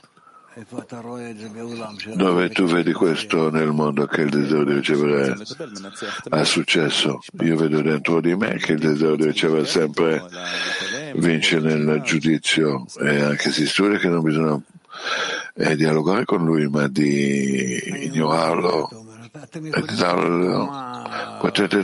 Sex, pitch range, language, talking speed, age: male, 75-95 Hz, Italian, 115 wpm, 60-79